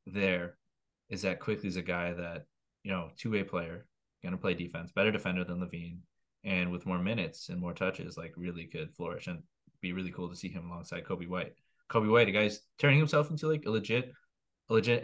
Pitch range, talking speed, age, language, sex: 90-110 Hz, 205 wpm, 20-39, English, male